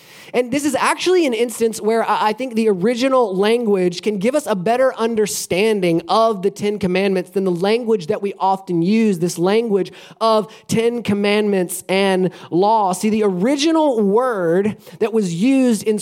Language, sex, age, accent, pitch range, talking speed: English, male, 20-39, American, 195-235 Hz, 165 wpm